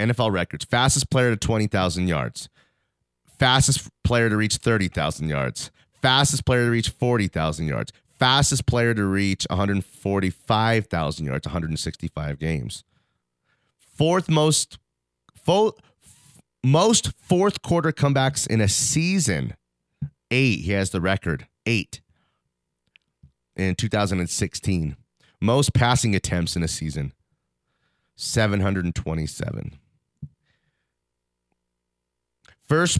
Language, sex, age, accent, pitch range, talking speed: English, male, 30-49, American, 80-135 Hz, 120 wpm